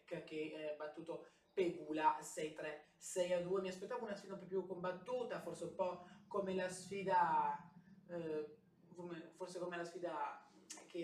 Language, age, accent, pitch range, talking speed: Italian, 20-39, native, 160-200 Hz, 140 wpm